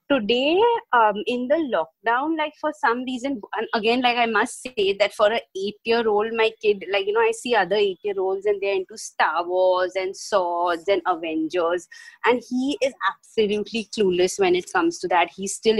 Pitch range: 200-275 Hz